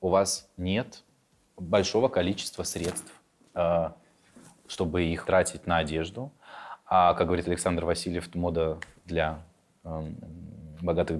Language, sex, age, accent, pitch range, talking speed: Russian, male, 20-39, native, 85-115 Hz, 100 wpm